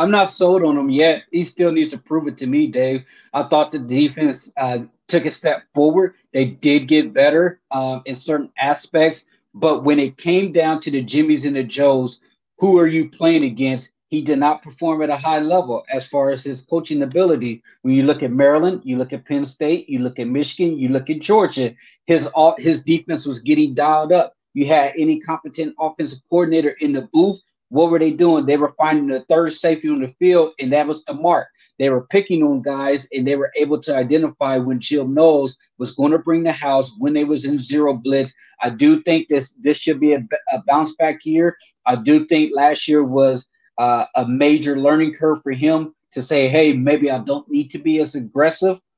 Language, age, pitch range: English, 30-49, 140-165 Hz